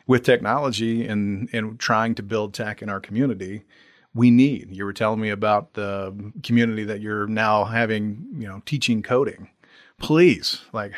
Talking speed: 165 wpm